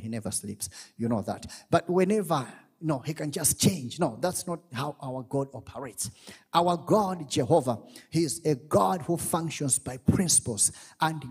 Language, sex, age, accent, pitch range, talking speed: English, male, 30-49, South African, 145-180 Hz, 170 wpm